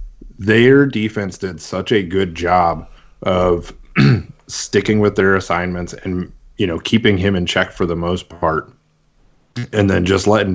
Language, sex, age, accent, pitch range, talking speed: English, male, 30-49, American, 85-100 Hz, 155 wpm